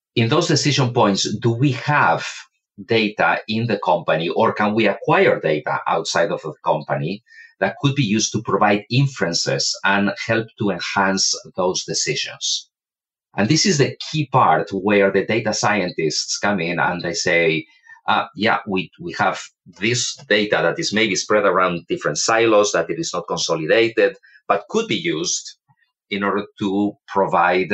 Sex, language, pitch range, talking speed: male, English, 95-130 Hz, 160 wpm